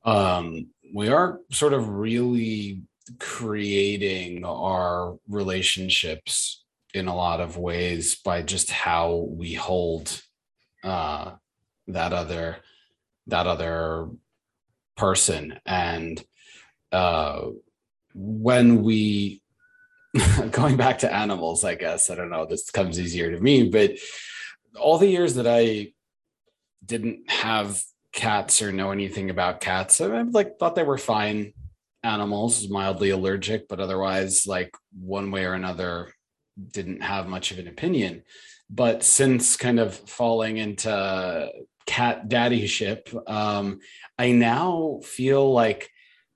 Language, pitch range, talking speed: English, 95-135 Hz, 120 wpm